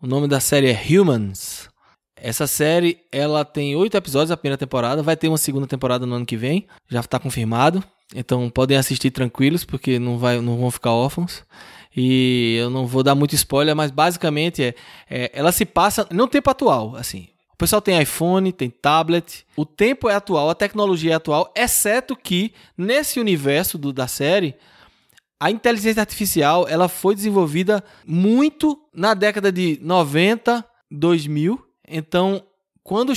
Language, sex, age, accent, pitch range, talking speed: Portuguese, male, 20-39, Brazilian, 145-205 Hz, 165 wpm